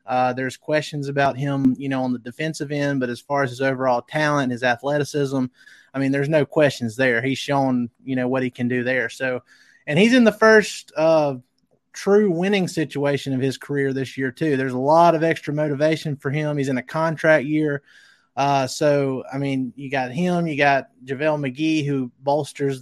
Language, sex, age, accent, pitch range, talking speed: English, male, 30-49, American, 135-160 Hz, 200 wpm